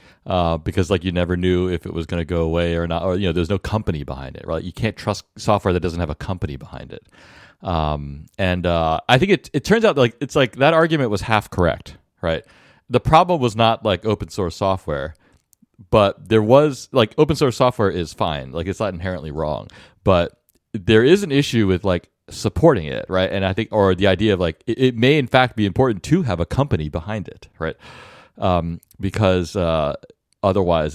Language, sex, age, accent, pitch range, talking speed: English, male, 40-59, American, 85-115 Hz, 215 wpm